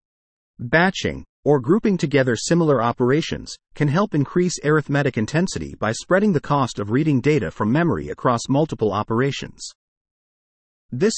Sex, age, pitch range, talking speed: male, 40-59, 115-165 Hz, 130 wpm